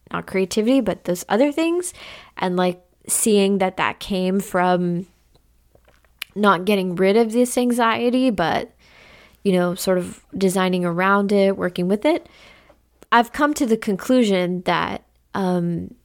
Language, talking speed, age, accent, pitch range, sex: English, 135 wpm, 20-39, American, 180-225 Hz, female